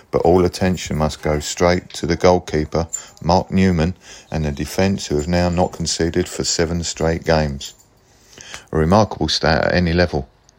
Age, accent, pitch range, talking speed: 40-59, British, 75-90 Hz, 165 wpm